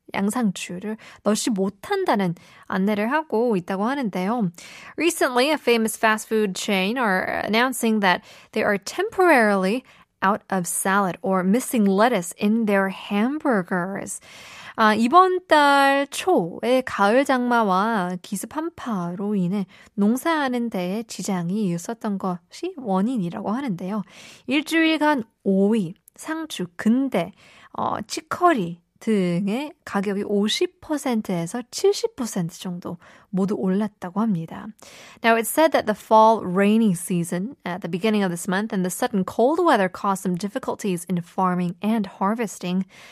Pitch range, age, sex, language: 190-250 Hz, 20-39, female, Korean